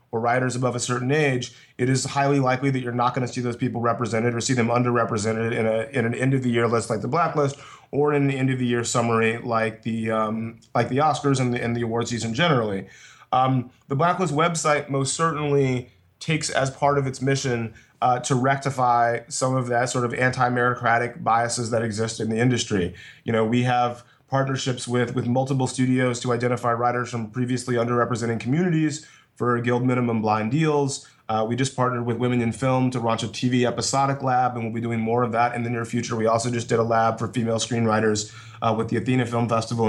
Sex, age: male, 30-49